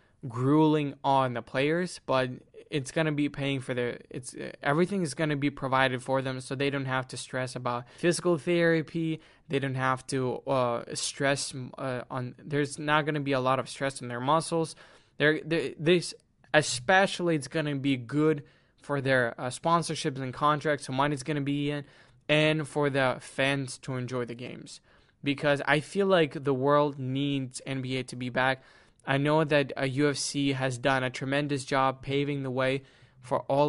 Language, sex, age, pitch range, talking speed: English, male, 20-39, 130-155 Hz, 185 wpm